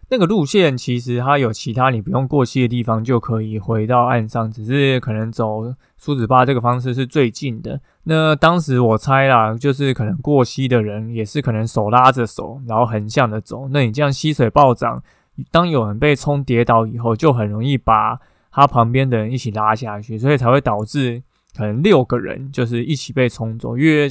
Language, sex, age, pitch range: Chinese, male, 20-39, 115-140 Hz